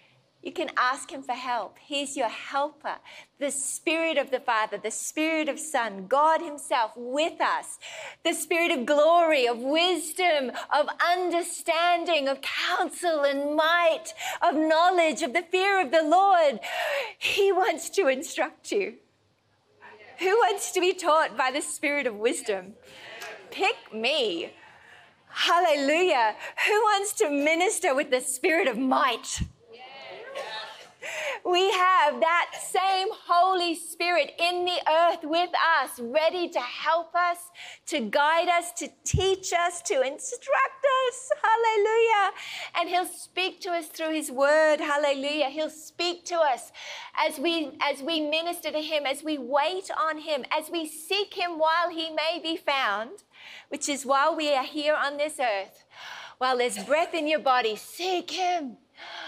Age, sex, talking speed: 40-59, female, 145 wpm